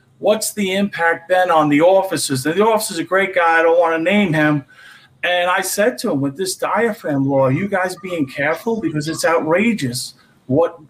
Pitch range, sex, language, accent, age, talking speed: 155-210 Hz, male, English, American, 40-59, 200 wpm